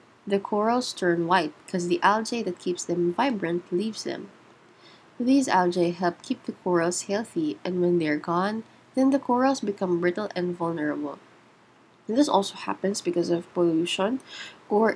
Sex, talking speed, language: female, 155 wpm, English